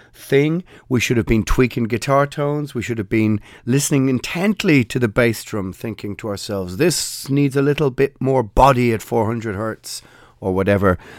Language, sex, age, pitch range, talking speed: English, male, 40-59, 100-140 Hz, 175 wpm